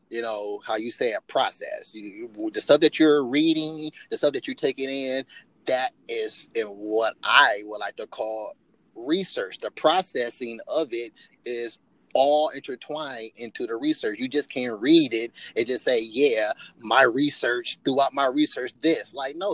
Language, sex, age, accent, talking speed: English, male, 30-49, American, 165 wpm